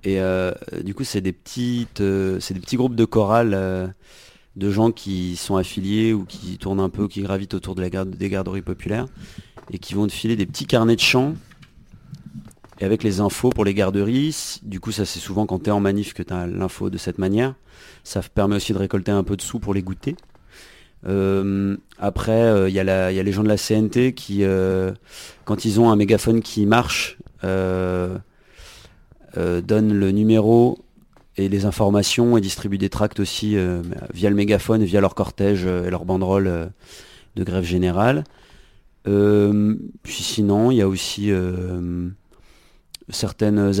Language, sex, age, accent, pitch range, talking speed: French, male, 30-49, French, 95-105 Hz, 190 wpm